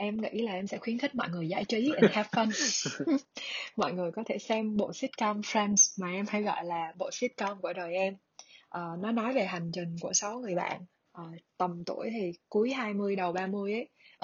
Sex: female